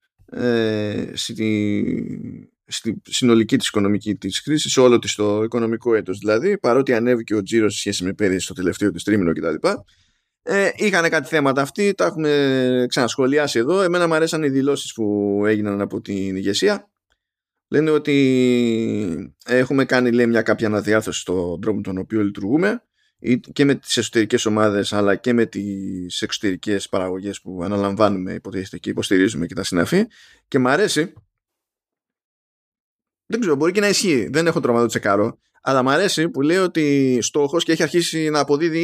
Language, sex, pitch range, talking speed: Greek, male, 100-140 Hz, 155 wpm